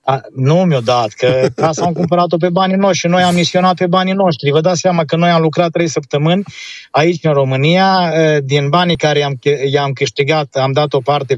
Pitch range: 140-185 Hz